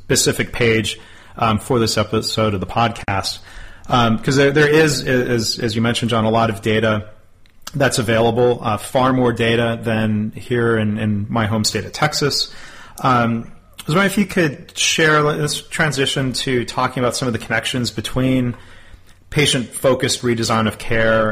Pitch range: 110-130 Hz